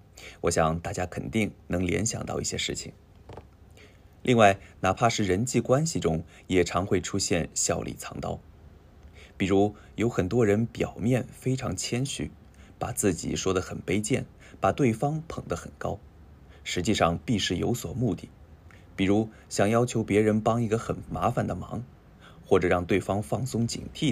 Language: Japanese